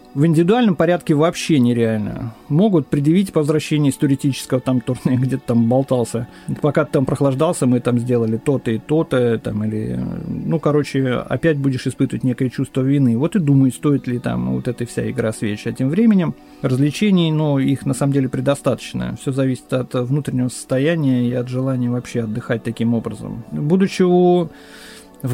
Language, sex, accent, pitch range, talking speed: Russian, male, native, 130-155 Hz, 170 wpm